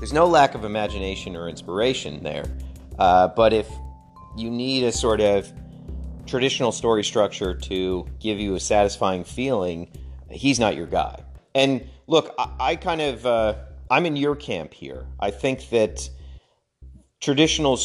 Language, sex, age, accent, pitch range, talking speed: English, male, 40-59, American, 85-115 Hz, 150 wpm